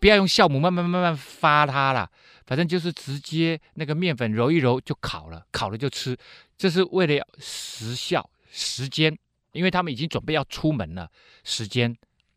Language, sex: Chinese, male